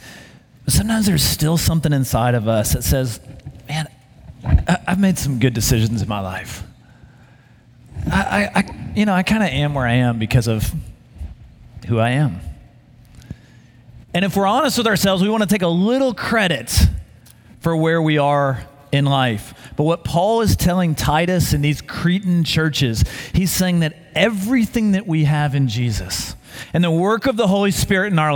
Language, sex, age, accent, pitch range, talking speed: English, male, 30-49, American, 120-180 Hz, 175 wpm